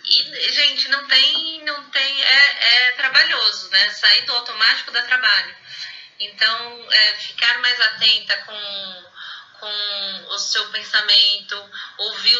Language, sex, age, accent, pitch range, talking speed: Portuguese, female, 20-39, Brazilian, 210-270 Hz, 125 wpm